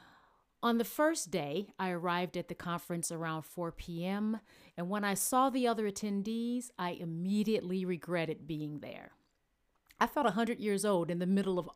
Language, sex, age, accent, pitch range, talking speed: Ukrainian, female, 40-59, American, 160-205 Hz, 170 wpm